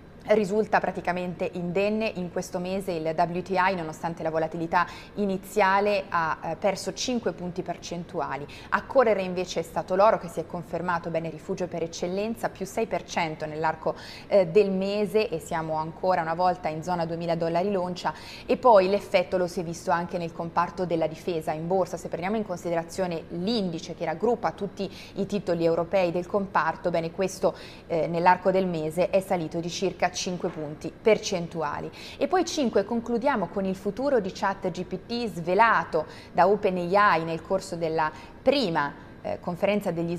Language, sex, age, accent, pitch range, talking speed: Italian, female, 20-39, native, 170-210 Hz, 160 wpm